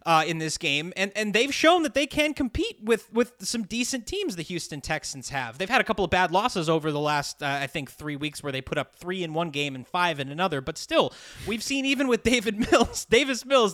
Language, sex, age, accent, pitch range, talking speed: English, male, 20-39, American, 160-215 Hz, 255 wpm